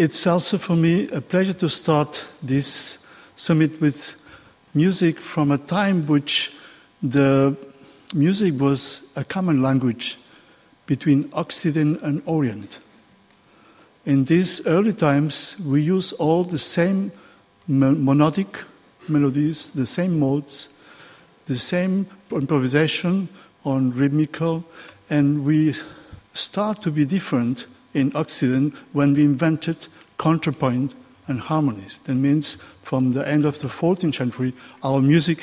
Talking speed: 120 wpm